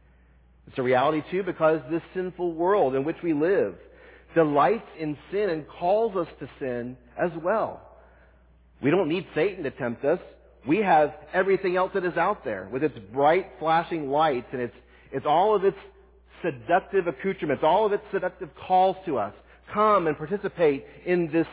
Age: 40-59